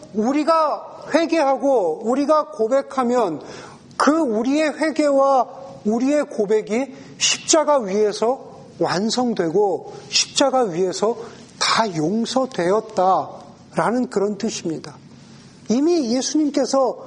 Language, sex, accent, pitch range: Korean, male, native, 185-255 Hz